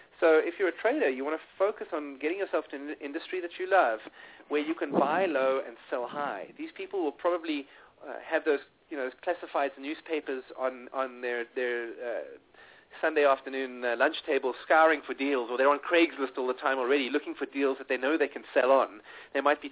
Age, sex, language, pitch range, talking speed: 30-49, male, English, 135-200 Hz, 215 wpm